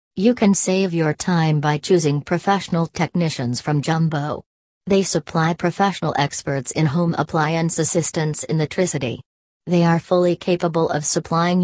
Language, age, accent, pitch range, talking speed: English, 40-59, American, 150-175 Hz, 145 wpm